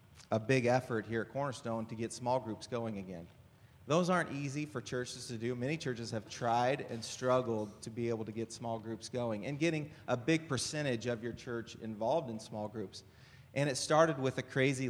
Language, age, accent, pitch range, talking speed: English, 30-49, American, 115-140 Hz, 205 wpm